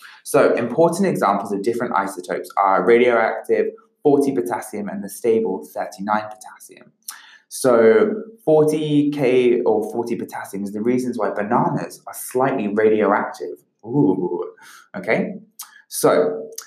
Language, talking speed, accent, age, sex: English, 110 wpm, British, 20-39, male